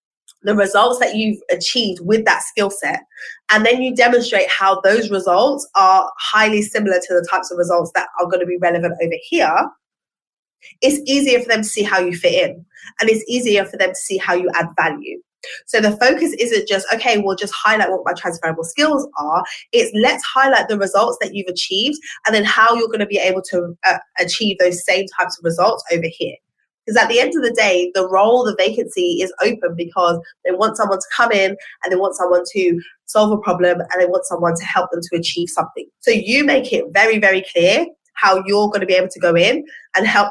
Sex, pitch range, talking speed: female, 180-235 Hz, 220 wpm